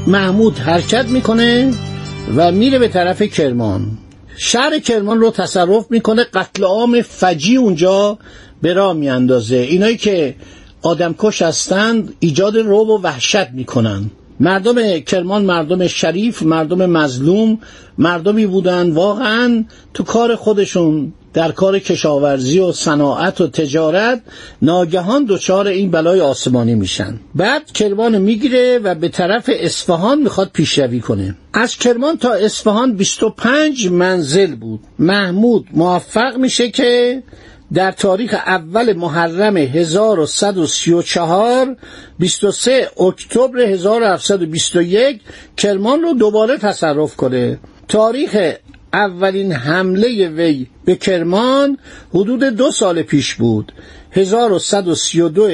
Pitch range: 165-220 Hz